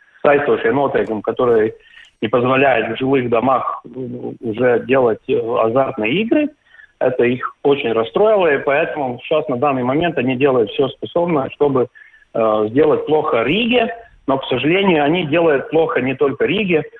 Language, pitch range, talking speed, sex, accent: Russian, 120-170 Hz, 135 wpm, male, native